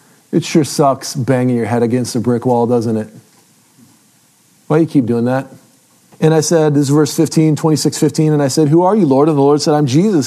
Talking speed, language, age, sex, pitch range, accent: 235 wpm, English, 40-59, male, 125-155 Hz, American